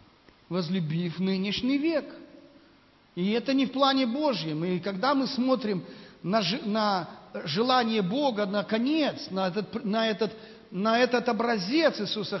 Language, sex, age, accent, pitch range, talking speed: Russian, male, 40-59, native, 230-290 Hz, 110 wpm